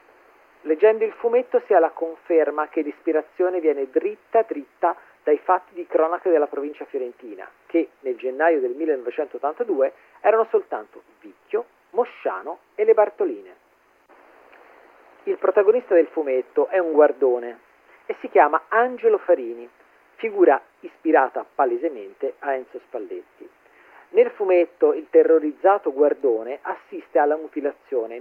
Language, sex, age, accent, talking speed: Italian, male, 40-59, native, 120 wpm